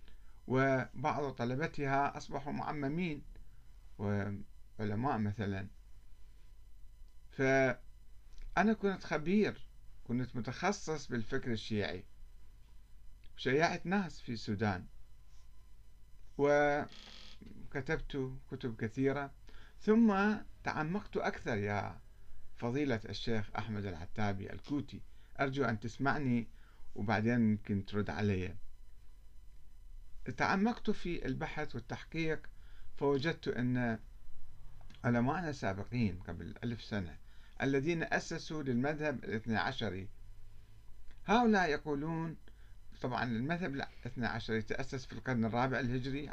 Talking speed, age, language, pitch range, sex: 85 wpm, 50-69, Arabic, 100-135 Hz, male